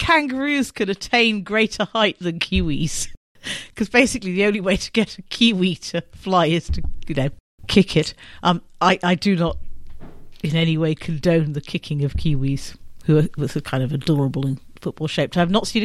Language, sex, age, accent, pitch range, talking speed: English, female, 50-69, British, 155-195 Hz, 185 wpm